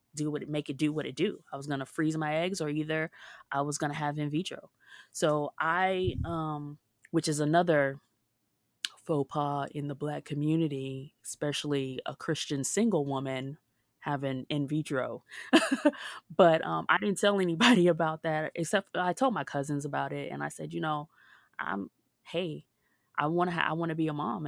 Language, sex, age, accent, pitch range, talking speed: English, female, 20-39, American, 135-155 Hz, 185 wpm